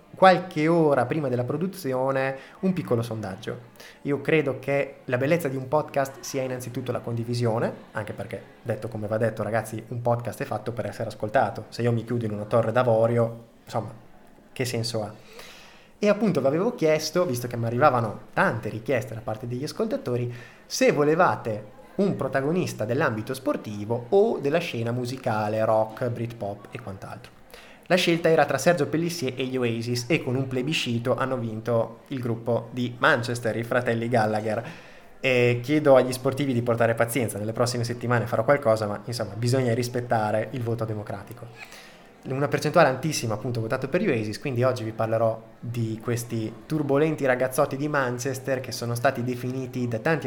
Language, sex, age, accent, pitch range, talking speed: Italian, male, 20-39, native, 115-140 Hz, 165 wpm